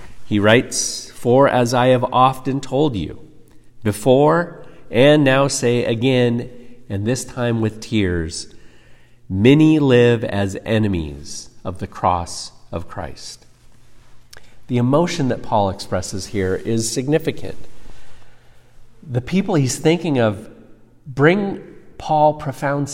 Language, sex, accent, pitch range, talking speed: English, male, American, 105-135 Hz, 115 wpm